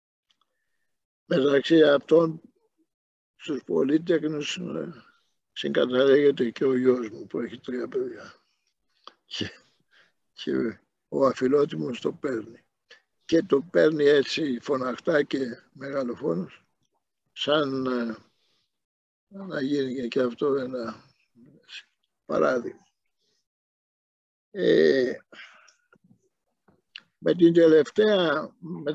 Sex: male